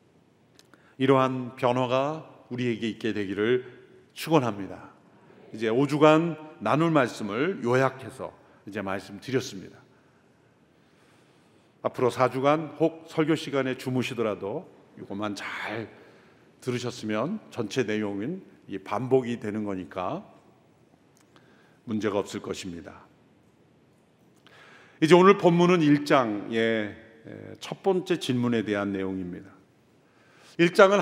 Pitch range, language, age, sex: 110-145 Hz, Korean, 50-69, male